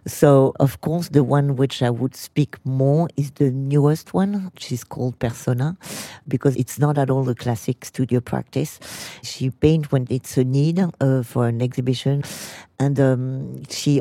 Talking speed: 165 wpm